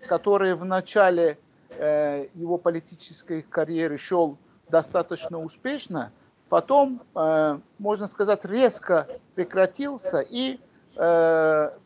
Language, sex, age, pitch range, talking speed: Russian, male, 50-69, 155-210 Hz, 90 wpm